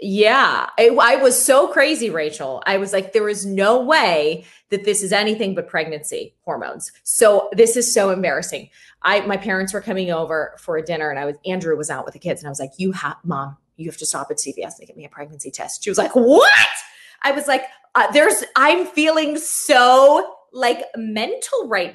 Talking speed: 215 wpm